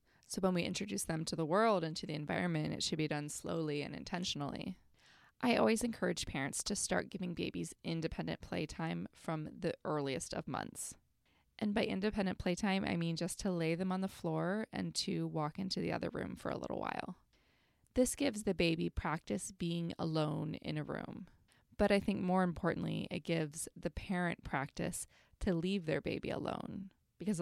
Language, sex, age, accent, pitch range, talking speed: English, female, 20-39, American, 155-195 Hz, 185 wpm